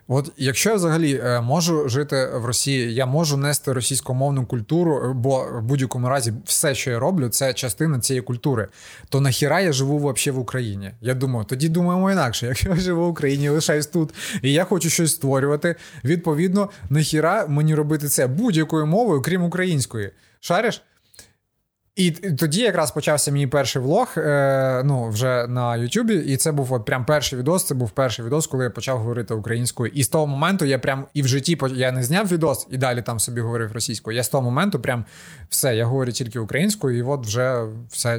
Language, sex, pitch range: Ukrainian, male, 125-160 Hz